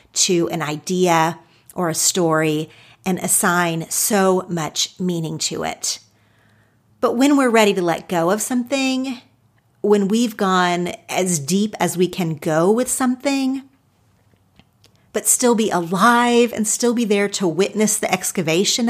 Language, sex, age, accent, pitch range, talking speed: English, female, 40-59, American, 170-235 Hz, 145 wpm